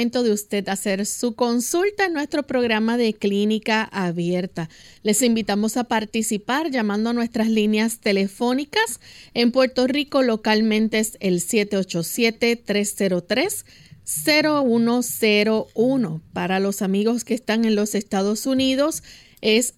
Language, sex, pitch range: Spanish, female, 205-260 Hz